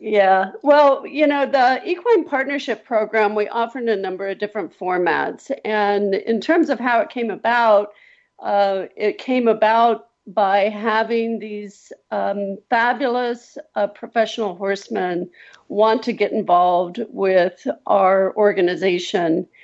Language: English